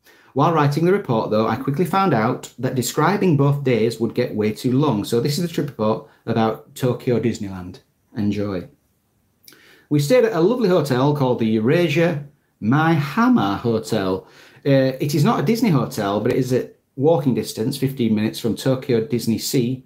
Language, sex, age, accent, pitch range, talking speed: English, male, 40-59, British, 115-155 Hz, 180 wpm